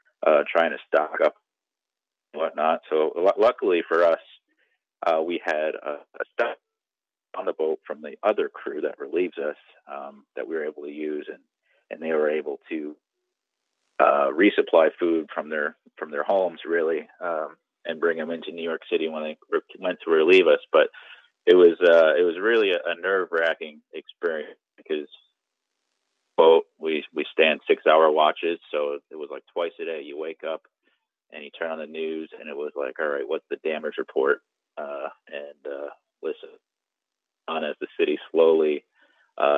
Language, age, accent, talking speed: English, 30-49, American, 185 wpm